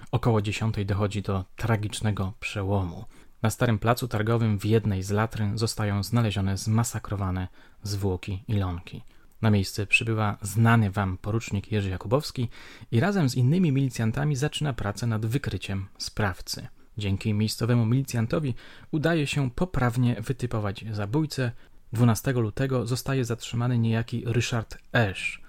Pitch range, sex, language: 105-130 Hz, male, Polish